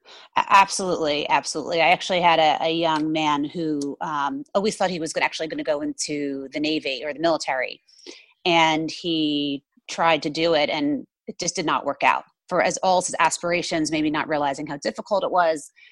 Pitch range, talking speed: 155-200 Hz, 190 wpm